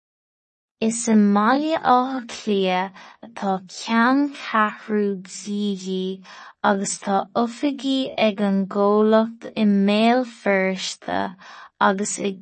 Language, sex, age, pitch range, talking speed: English, female, 20-39, 195-230 Hz, 60 wpm